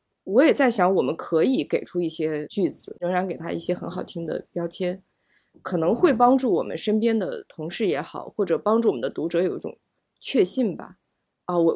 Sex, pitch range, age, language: female, 175-240 Hz, 20-39, Chinese